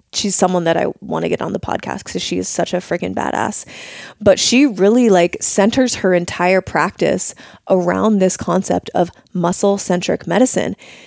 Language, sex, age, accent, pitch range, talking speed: English, female, 20-39, American, 175-210 Hz, 175 wpm